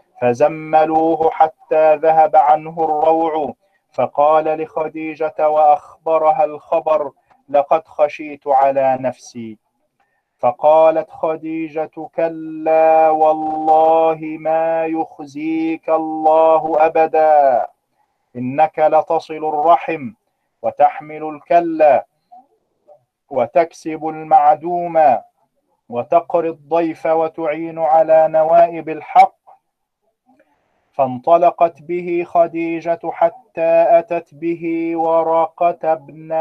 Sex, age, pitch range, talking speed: male, 40-59, 155-170 Hz, 70 wpm